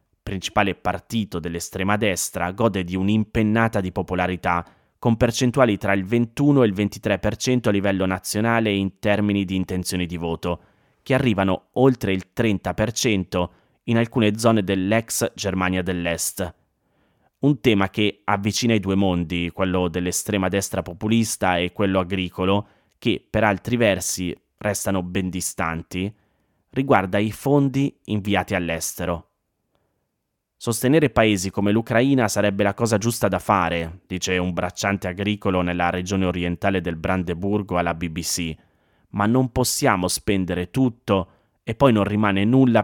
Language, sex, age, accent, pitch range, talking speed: Italian, male, 20-39, native, 90-110 Hz, 130 wpm